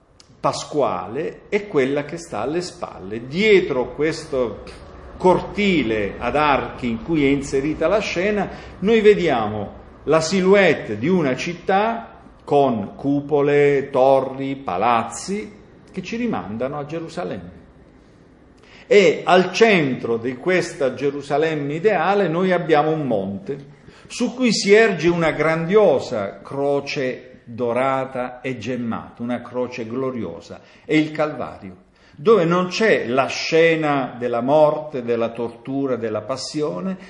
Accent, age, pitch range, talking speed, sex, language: native, 50-69, 125-165 Hz, 115 wpm, male, Italian